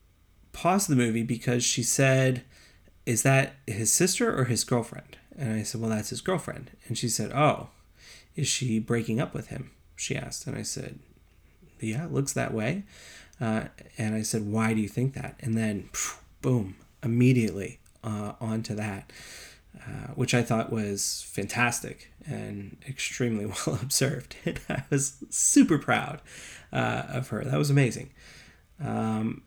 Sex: male